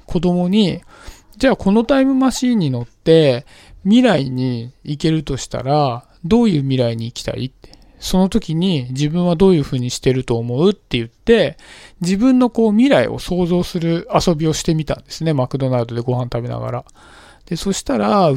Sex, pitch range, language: male, 125-200 Hz, Japanese